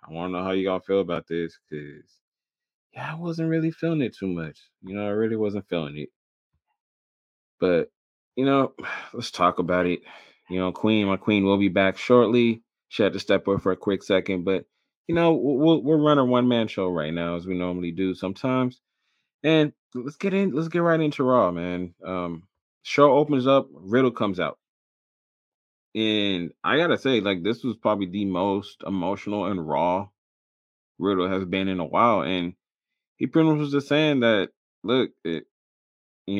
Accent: American